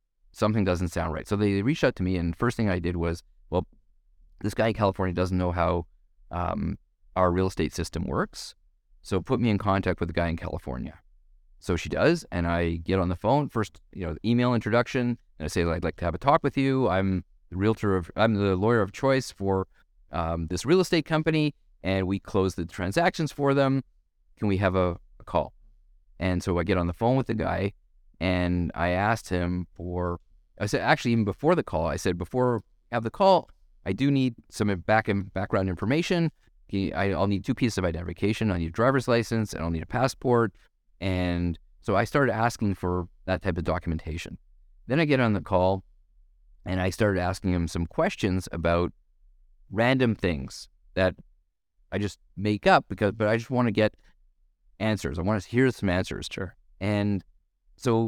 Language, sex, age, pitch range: English, male, 30-49, 85-110 Hz